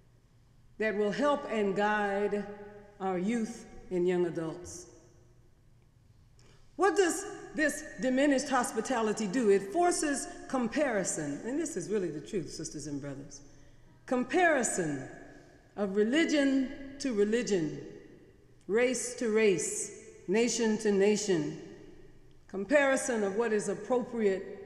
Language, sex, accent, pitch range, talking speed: English, female, American, 180-265 Hz, 105 wpm